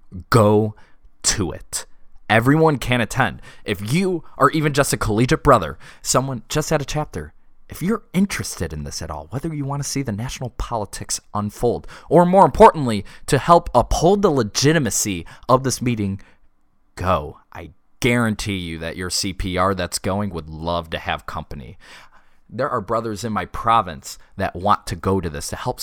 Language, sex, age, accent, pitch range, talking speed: English, male, 20-39, American, 90-140 Hz, 170 wpm